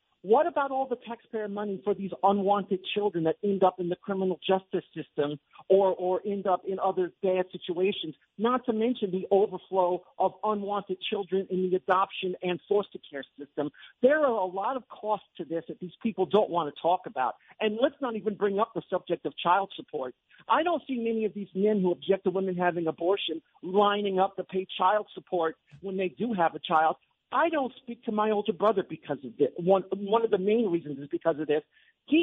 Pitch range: 180-230 Hz